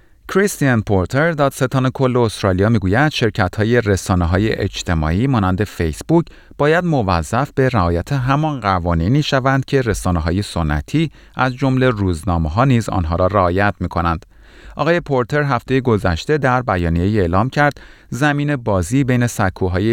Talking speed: 140 wpm